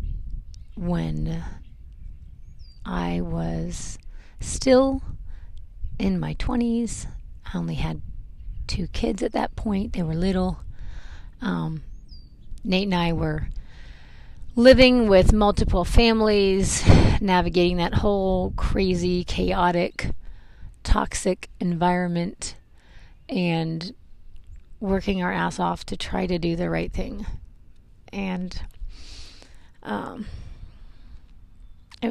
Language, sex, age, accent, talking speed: English, female, 30-49, American, 90 wpm